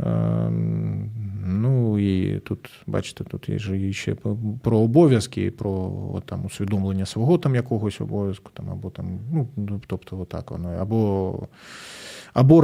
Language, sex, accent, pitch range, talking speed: Ukrainian, male, native, 105-140 Hz, 125 wpm